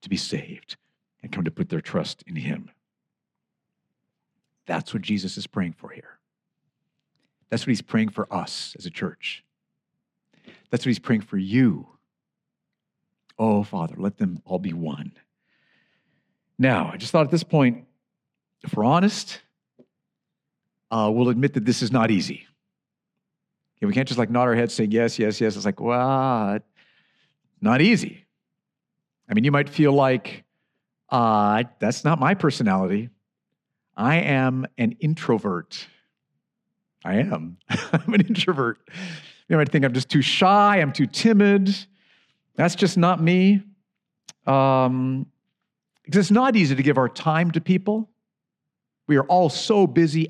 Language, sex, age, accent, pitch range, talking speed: English, male, 50-69, American, 120-195 Hz, 145 wpm